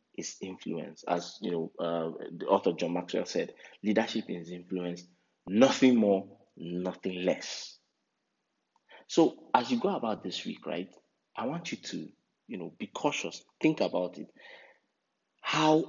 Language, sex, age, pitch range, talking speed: English, male, 30-49, 90-105 Hz, 145 wpm